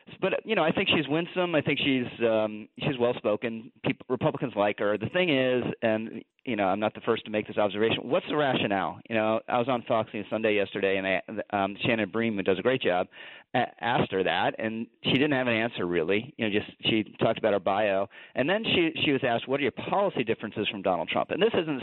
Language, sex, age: English, male, 40-59